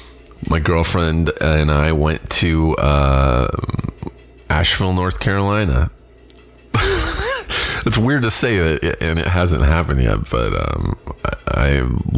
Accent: American